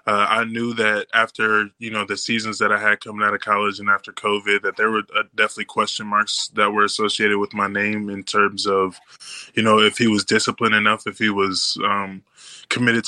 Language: English